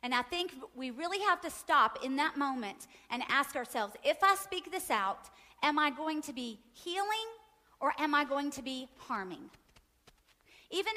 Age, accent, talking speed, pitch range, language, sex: 40-59, American, 180 wpm, 240-340 Hz, English, female